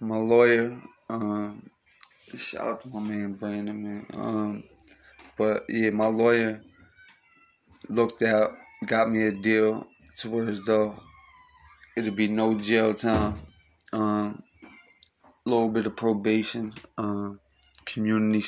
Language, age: English, 20-39